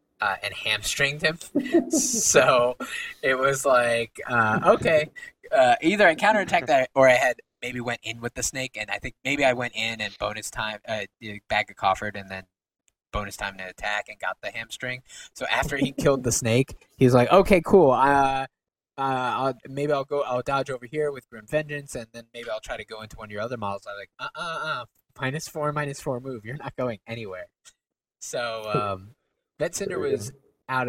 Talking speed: 205 wpm